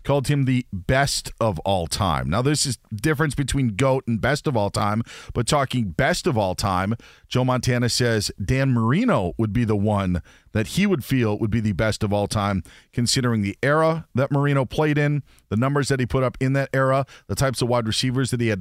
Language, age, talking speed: English, 40-59, 220 wpm